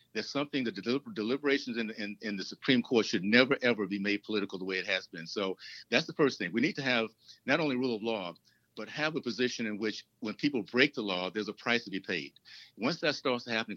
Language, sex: English, male